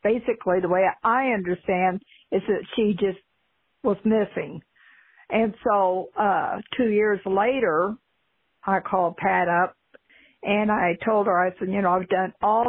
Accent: American